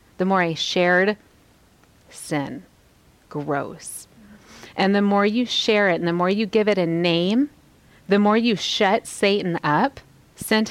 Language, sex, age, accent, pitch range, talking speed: English, female, 30-49, American, 170-230 Hz, 150 wpm